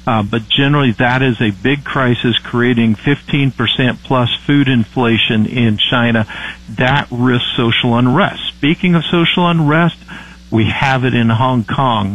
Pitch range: 115-135 Hz